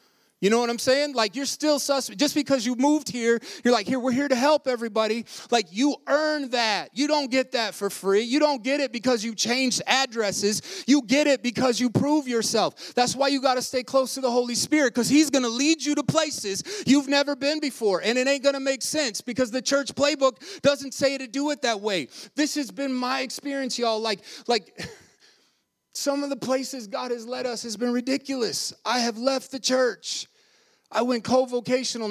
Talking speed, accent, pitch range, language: 215 wpm, American, 235-280 Hz, English